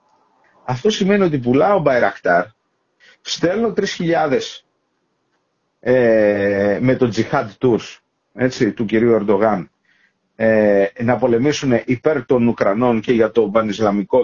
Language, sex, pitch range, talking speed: Greek, male, 115-160 Hz, 105 wpm